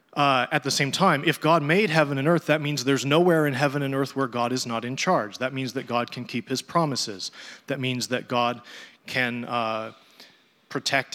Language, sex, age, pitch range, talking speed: English, male, 30-49, 120-140 Hz, 215 wpm